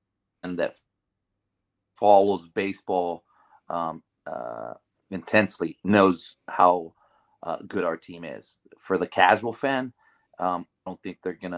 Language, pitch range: English, 90-100 Hz